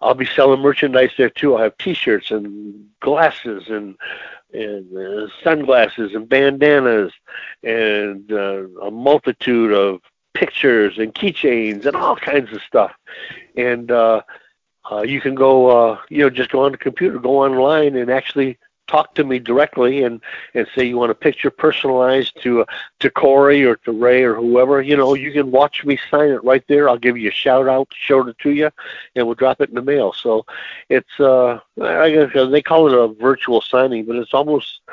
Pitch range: 115-140 Hz